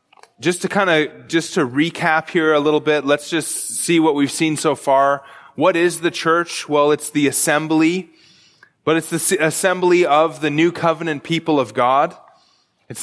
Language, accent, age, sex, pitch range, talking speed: English, American, 20-39, male, 145-170 Hz, 180 wpm